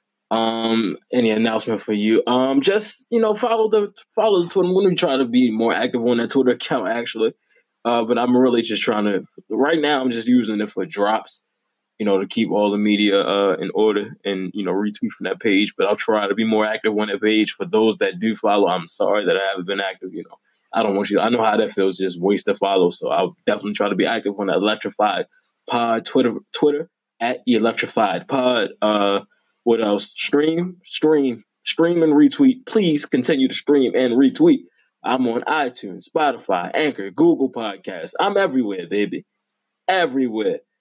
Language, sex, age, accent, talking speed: English, male, 20-39, American, 205 wpm